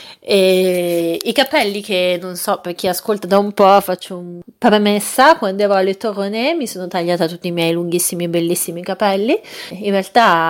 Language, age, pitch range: Italian, 30-49, 175-200 Hz